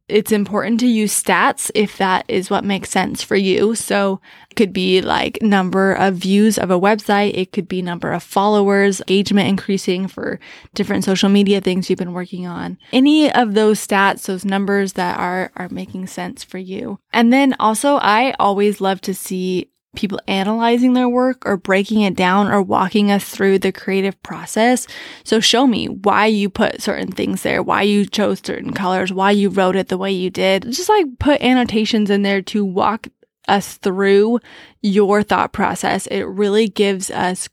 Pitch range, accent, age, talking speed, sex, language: 190-220 Hz, American, 20-39, 185 wpm, female, English